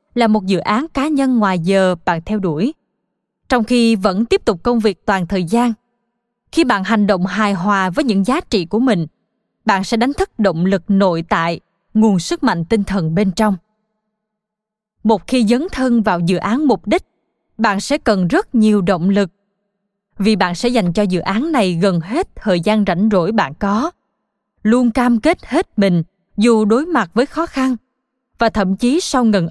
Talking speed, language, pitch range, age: 195 wpm, Vietnamese, 195-245 Hz, 20-39